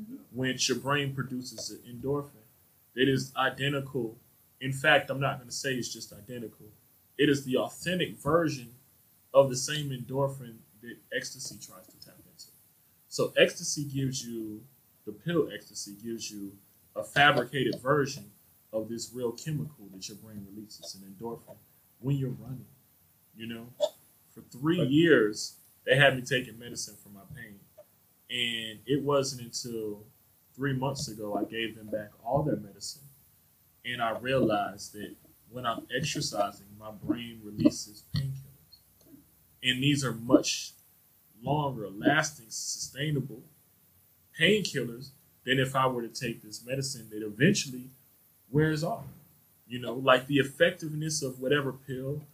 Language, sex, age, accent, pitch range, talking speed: English, male, 20-39, American, 110-140 Hz, 145 wpm